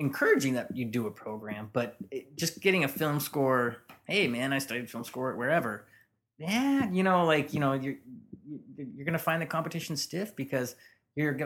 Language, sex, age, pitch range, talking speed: English, male, 30-49, 115-140 Hz, 190 wpm